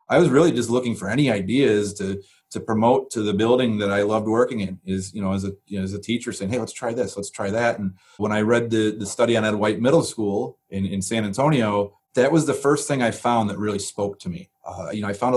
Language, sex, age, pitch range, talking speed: English, male, 30-49, 100-120 Hz, 275 wpm